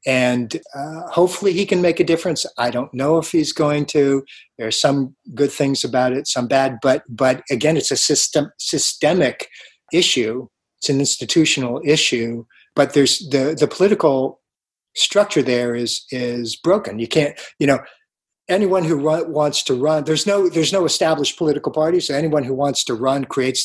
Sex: male